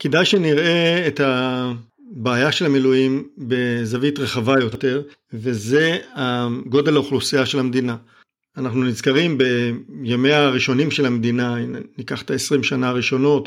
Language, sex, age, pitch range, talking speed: Hebrew, male, 50-69, 125-145 Hz, 110 wpm